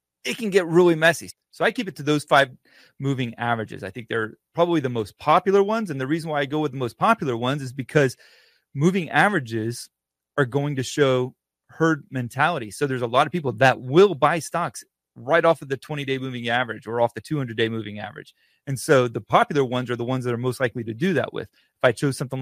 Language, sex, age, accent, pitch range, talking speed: English, male, 30-49, American, 120-150 Hz, 235 wpm